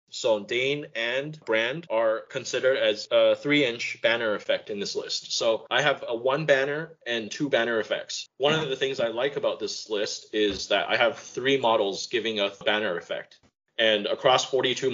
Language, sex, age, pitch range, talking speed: English, male, 20-39, 110-175 Hz, 185 wpm